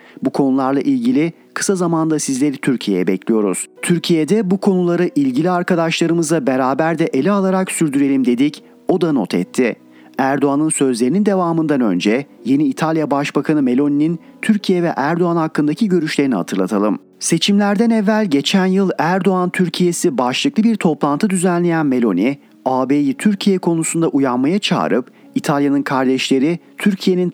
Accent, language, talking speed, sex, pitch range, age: native, Turkish, 125 wpm, male, 140-195 Hz, 40-59